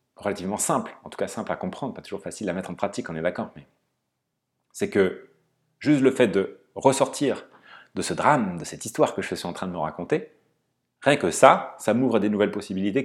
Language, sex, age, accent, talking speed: French, male, 30-49, French, 230 wpm